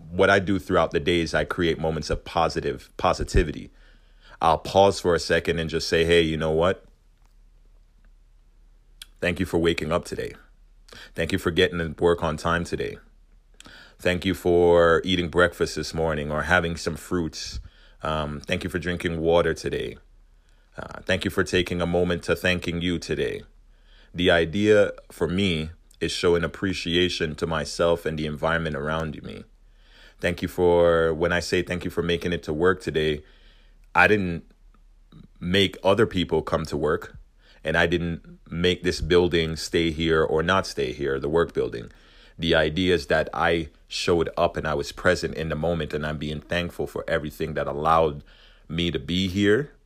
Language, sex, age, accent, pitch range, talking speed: English, male, 30-49, American, 80-90 Hz, 175 wpm